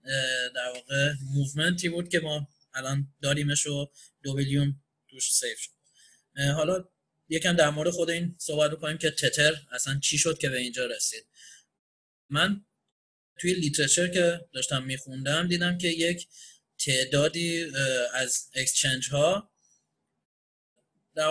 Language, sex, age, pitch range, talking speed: Persian, male, 20-39, 135-170 Hz, 130 wpm